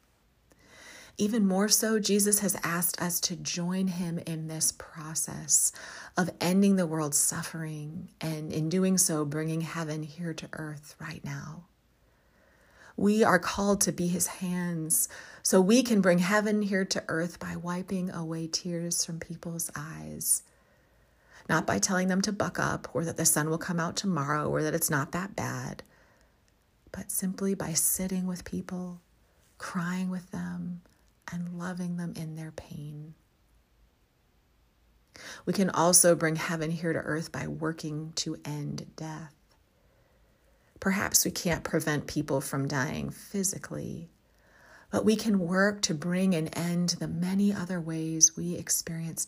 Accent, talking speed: American, 150 wpm